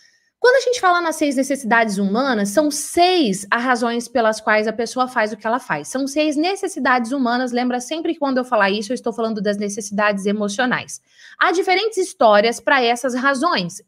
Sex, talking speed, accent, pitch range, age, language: female, 190 wpm, Brazilian, 215-275 Hz, 20-39, Portuguese